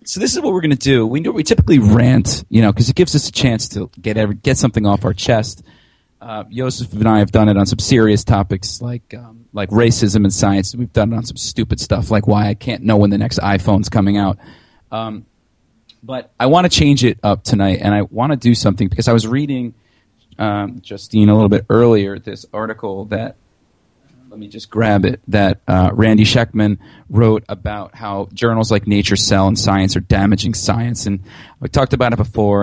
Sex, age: male, 30-49